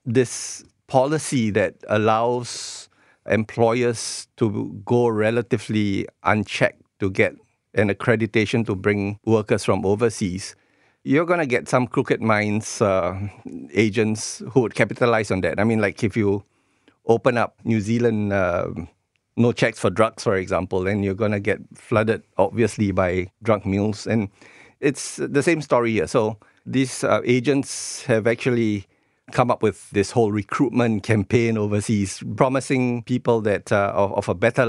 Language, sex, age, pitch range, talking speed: English, male, 50-69, 100-120 Hz, 150 wpm